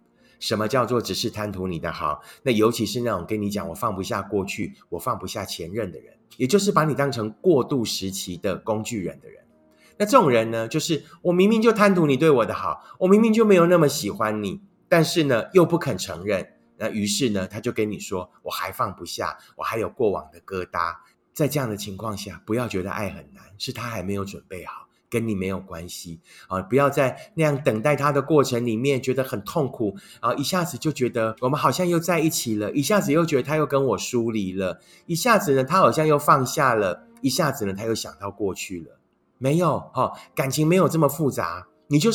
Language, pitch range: Chinese, 100-155 Hz